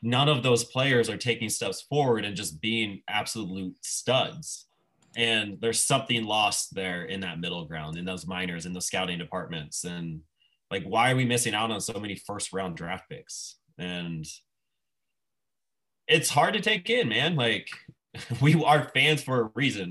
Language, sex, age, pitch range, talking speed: English, male, 20-39, 105-135 Hz, 170 wpm